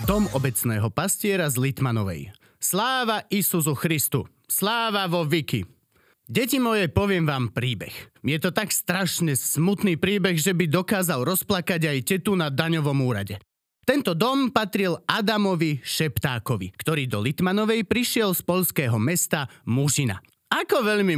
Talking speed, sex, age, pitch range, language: 130 wpm, male, 30-49, 130-195 Hz, Slovak